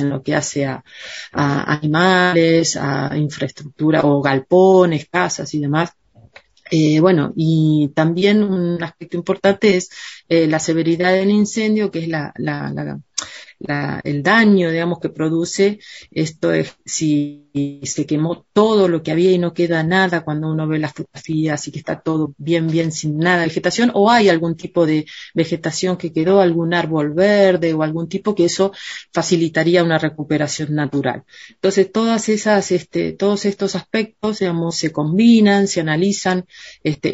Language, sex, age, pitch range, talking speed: Spanish, female, 30-49, 155-190 Hz, 160 wpm